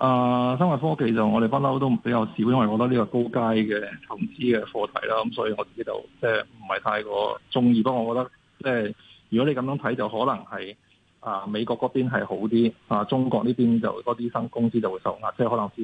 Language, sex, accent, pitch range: Chinese, male, native, 115-140 Hz